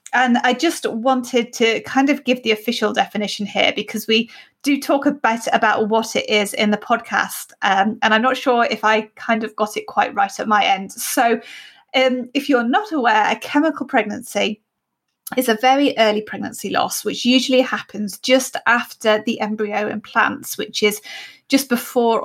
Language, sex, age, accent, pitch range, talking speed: English, female, 30-49, British, 215-250 Hz, 180 wpm